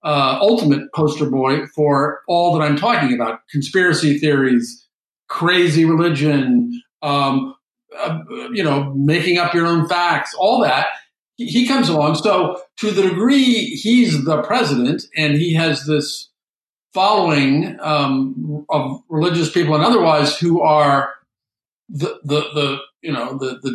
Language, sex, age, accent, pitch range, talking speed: English, male, 50-69, American, 145-175 Hz, 140 wpm